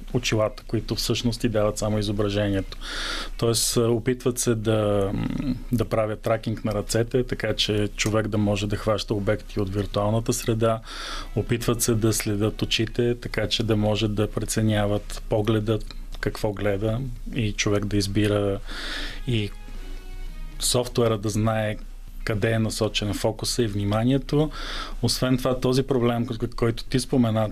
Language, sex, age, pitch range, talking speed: Bulgarian, male, 20-39, 105-120 Hz, 135 wpm